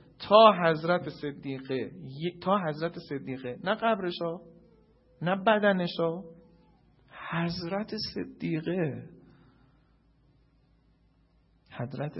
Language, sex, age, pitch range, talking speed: Persian, male, 40-59, 145-205 Hz, 65 wpm